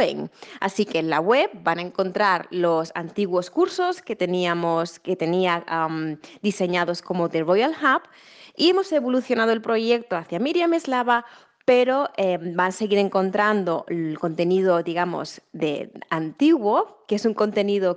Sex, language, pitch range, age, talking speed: female, Spanish, 180-245 Hz, 20-39, 145 wpm